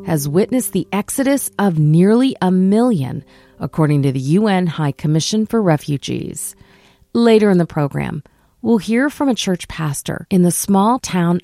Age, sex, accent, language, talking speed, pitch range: 40-59, female, American, English, 155 wpm, 150-210 Hz